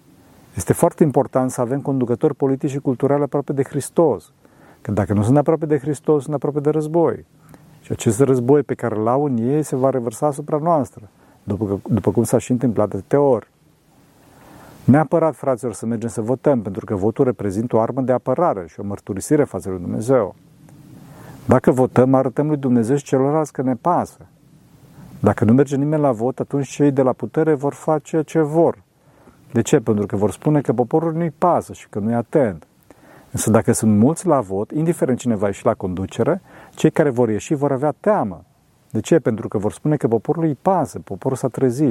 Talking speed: 195 wpm